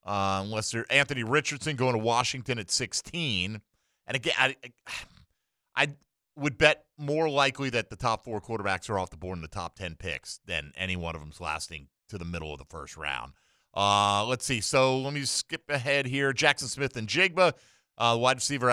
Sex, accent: male, American